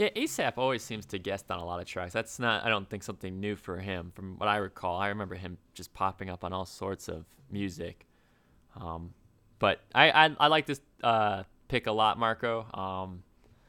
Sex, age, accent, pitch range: male, 20-39, American, 95-125 Hz